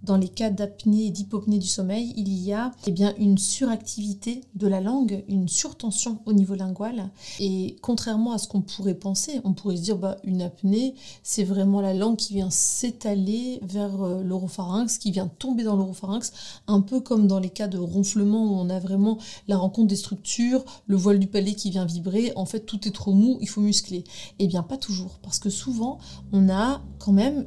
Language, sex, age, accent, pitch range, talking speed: French, female, 30-49, French, 195-220 Hz, 200 wpm